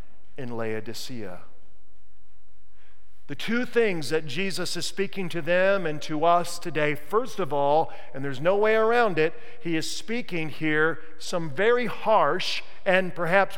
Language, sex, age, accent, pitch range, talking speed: English, male, 50-69, American, 110-175 Hz, 145 wpm